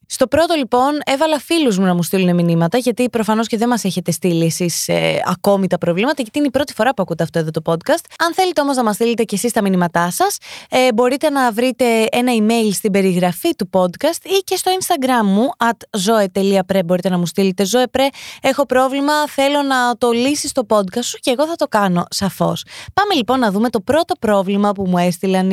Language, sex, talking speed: Greek, female, 210 wpm